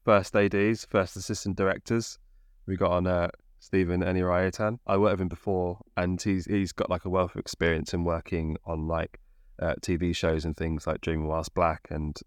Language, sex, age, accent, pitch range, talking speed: English, male, 20-39, British, 80-95 Hz, 195 wpm